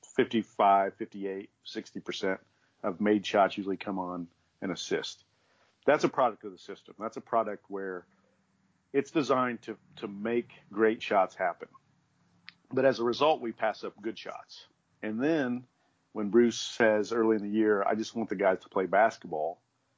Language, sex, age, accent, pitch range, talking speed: English, male, 50-69, American, 100-120 Hz, 165 wpm